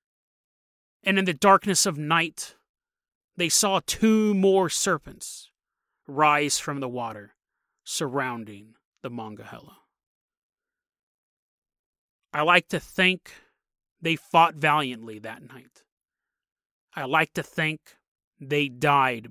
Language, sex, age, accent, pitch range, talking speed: English, male, 30-49, American, 150-195 Hz, 105 wpm